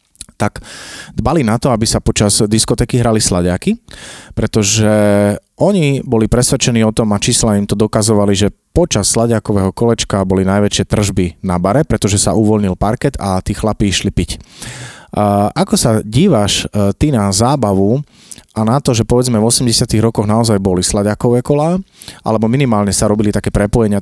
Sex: male